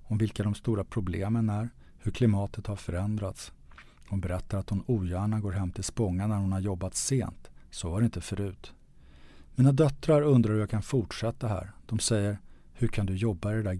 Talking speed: 200 wpm